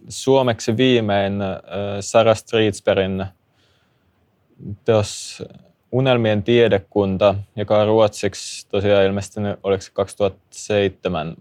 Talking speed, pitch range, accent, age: 80 wpm, 95-105 Hz, native, 20-39